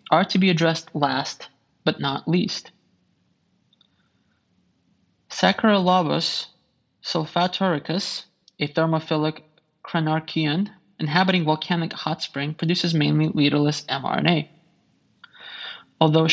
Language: English